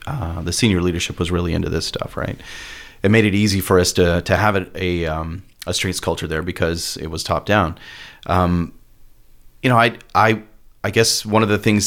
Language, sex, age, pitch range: English, male, 30-49, 90-105 Hz